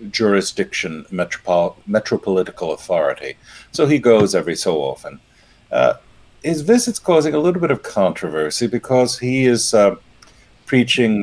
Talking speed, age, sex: 130 wpm, 50-69, male